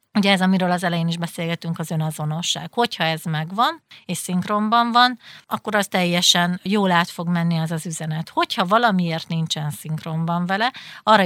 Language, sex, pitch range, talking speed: Hungarian, female, 165-195 Hz, 165 wpm